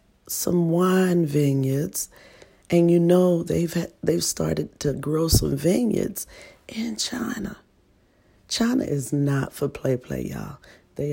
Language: English